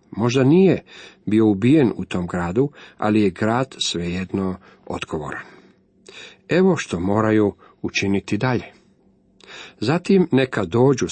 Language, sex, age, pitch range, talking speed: Croatian, male, 40-59, 100-135 Hz, 110 wpm